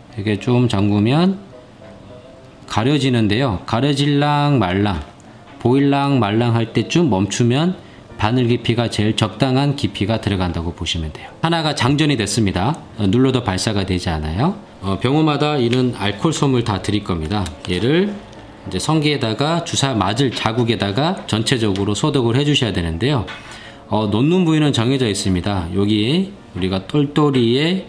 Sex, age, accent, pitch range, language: male, 20-39, native, 100-145 Hz, Korean